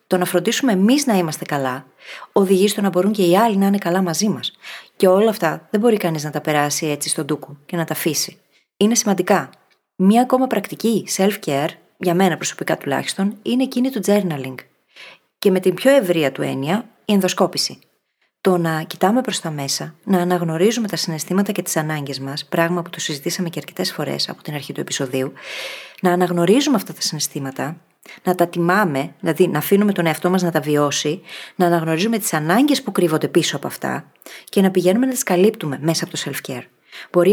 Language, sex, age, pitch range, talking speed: Greek, female, 30-49, 160-205 Hz, 195 wpm